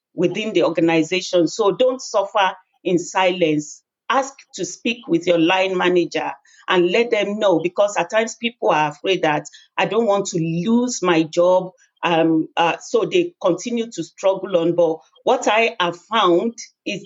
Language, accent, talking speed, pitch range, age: English, Nigerian, 165 wpm, 165-200 Hz, 40-59